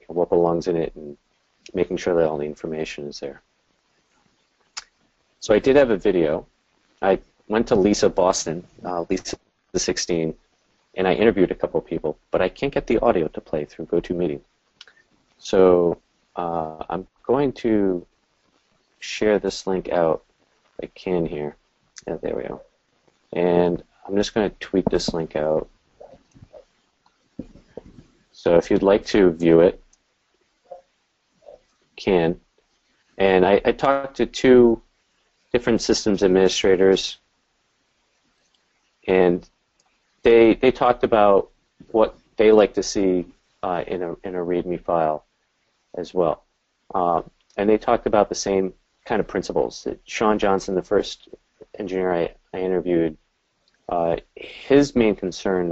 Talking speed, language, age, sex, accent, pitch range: 140 wpm, English, 30-49, male, American, 85-105 Hz